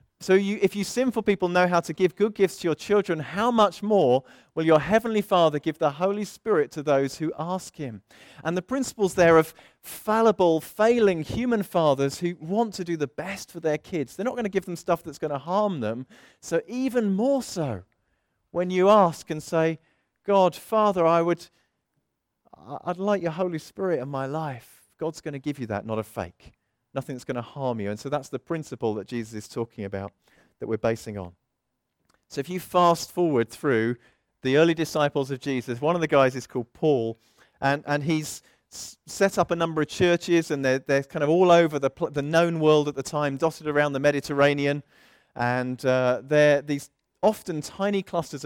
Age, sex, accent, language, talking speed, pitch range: 40-59, male, British, English, 200 wpm, 135-180 Hz